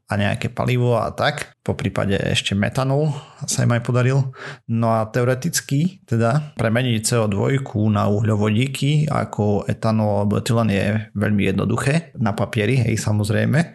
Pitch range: 105-125 Hz